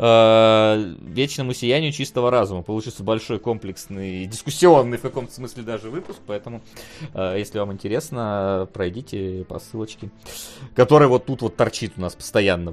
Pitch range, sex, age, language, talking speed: 105-155 Hz, male, 30-49, Russian, 130 wpm